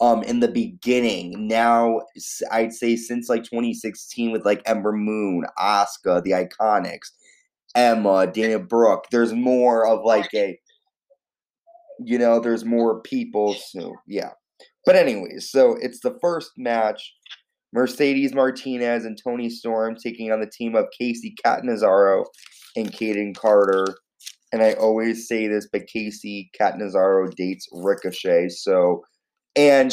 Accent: American